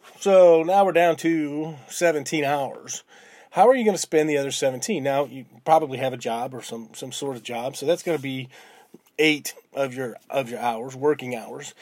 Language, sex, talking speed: English, male, 210 wpm